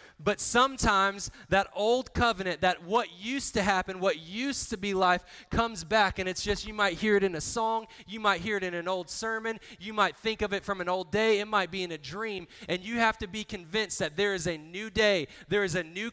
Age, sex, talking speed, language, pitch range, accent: 20-39, male, 245 wpm, English, 175-220 Hz, American